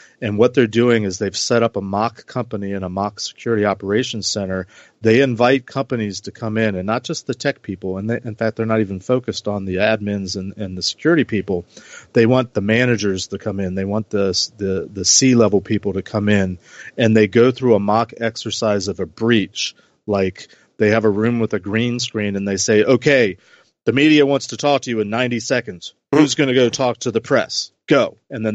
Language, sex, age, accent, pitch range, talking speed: English, male, 40-59, American, 100-120 Hz, 225 wpm